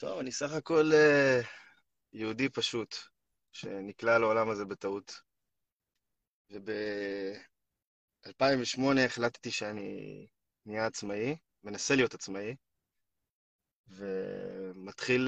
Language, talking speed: Hebrew, 80 wpm